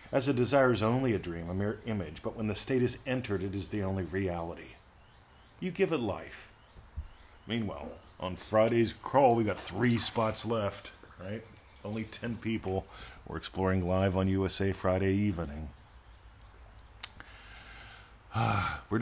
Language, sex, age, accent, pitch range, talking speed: English, male, 40-59, American, 90-110 Hz, 145 wpm